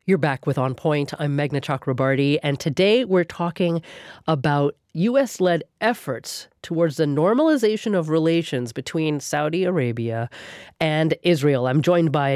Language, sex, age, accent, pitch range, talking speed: English, female, 30-49, American, 140-175 Hz, 135 wpm